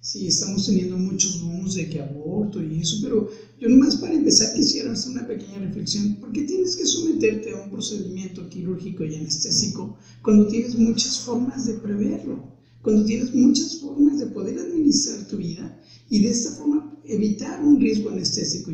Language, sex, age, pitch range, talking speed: Spanish, male, 50-69, 155-215 Hz, 175 wpm